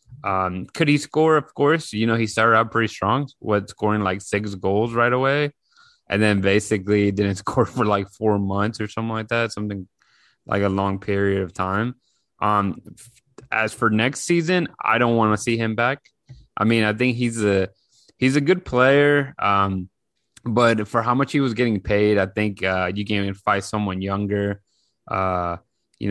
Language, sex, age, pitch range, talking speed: English, male, 20-39, 100-115 Hz, 185 wpm